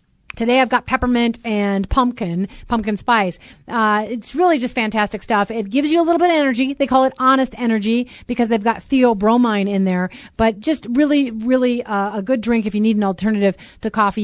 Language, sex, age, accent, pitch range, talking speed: English, female, 30-49, American, 215-265 Hz, 200 wpm